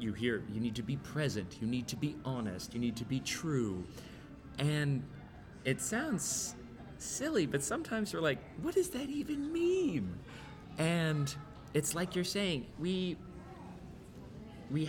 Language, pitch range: English, 115-150 Hz